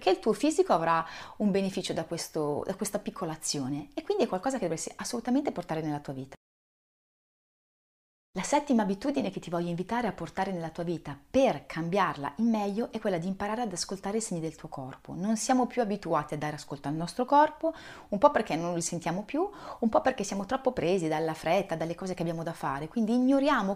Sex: female